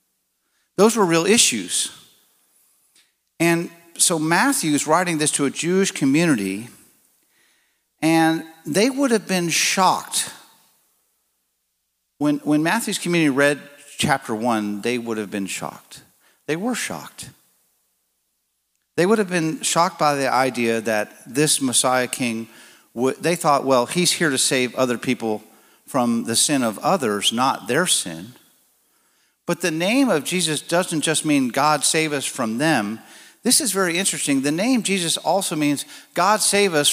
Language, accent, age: English, American, 50-69